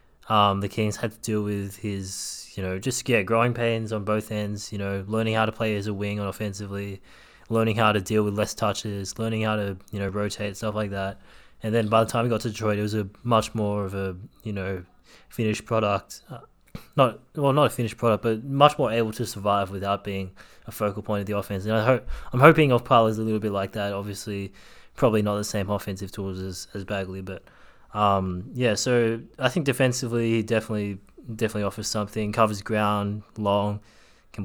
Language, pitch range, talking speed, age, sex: English, 100-115 Hz, 215 wpm, 20-39, male